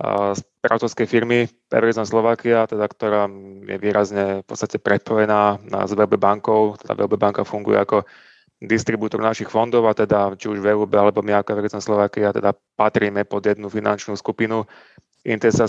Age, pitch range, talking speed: 20-39, 105-115 Hz, 150 wpm